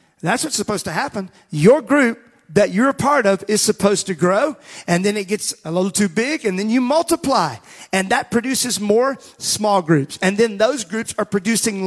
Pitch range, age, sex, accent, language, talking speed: 170-215 Hz, 40-59, male, American, English, 200 wpm